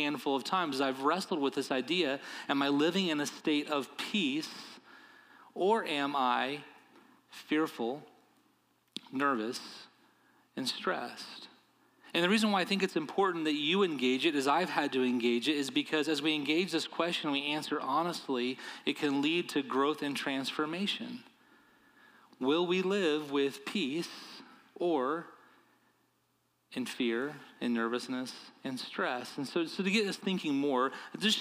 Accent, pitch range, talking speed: American, 145-200 Hz, 155 wpm